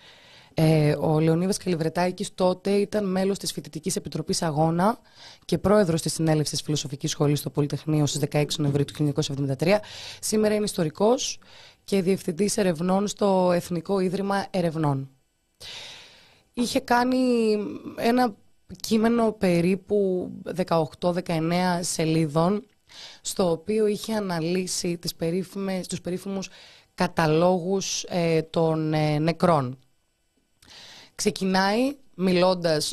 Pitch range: 155-195 Hz